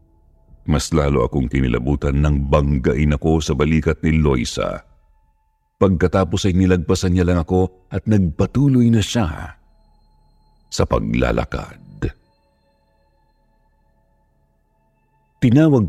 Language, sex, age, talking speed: Filipino, male, 50-69, 90 wpm